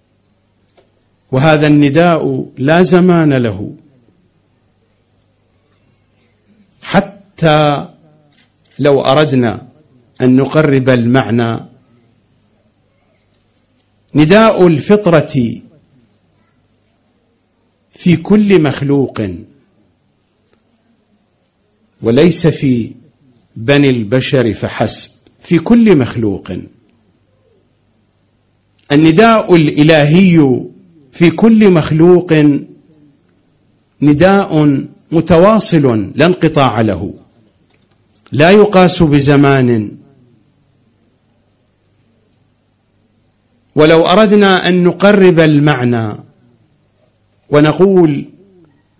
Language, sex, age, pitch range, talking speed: English, male, 50-69, 110-155 Hz, 50 wpm